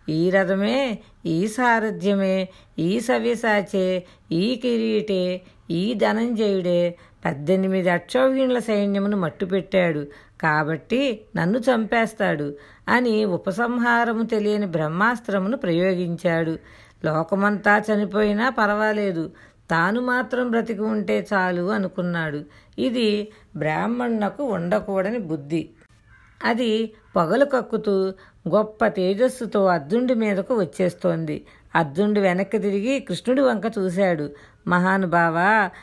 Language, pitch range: Telugu, 175-220 Hz